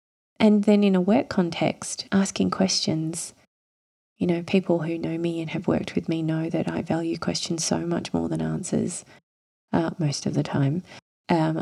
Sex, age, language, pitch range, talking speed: female, 20-39, English, 140-185 Hz, 180 wpm